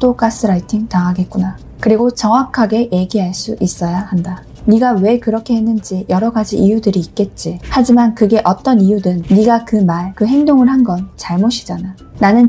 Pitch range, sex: 190-240 Hz, female